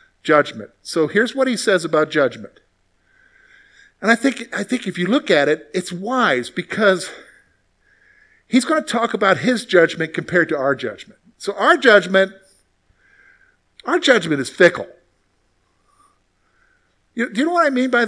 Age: 50-69